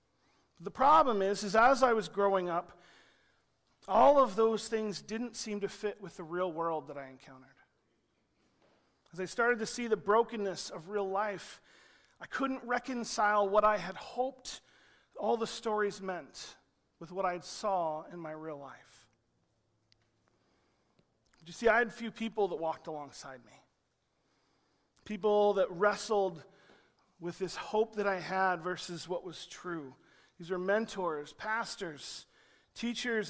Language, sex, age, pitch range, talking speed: English, male, 40-59, 170-220 Hz, 150 wpm